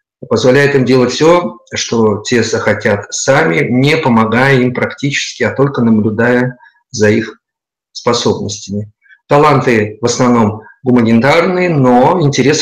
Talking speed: 115 wpm